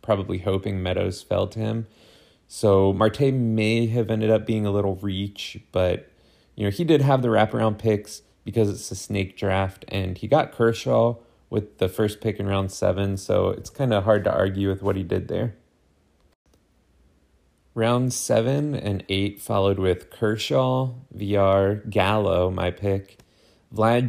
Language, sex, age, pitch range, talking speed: English, male, 30-49, 95-115 Hz, 160 wpm